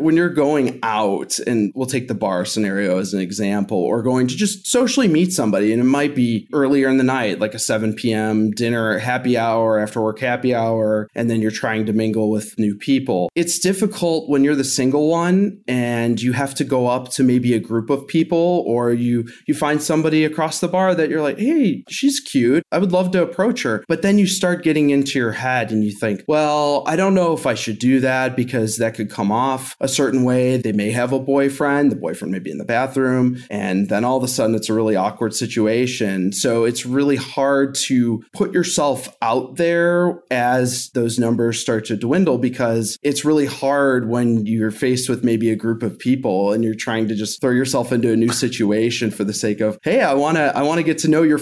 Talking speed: 225 wpm